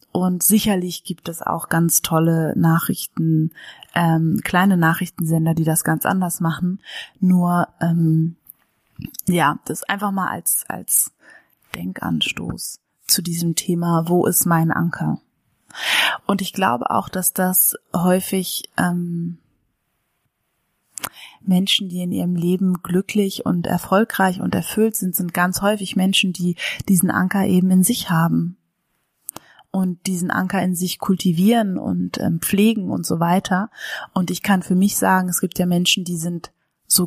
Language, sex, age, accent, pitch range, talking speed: German, female, 20-39, German, 170-195 Hz, 140 wpm